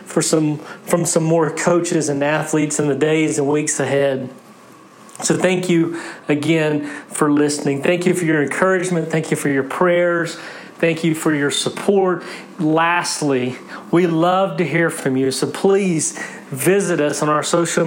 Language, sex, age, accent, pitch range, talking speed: English, male, 40-59, American, 150-175 Hz, 165 wpm